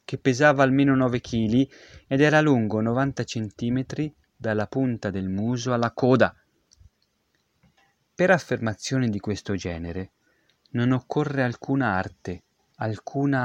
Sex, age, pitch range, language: male, 30-49, 105-140 Hz, Italian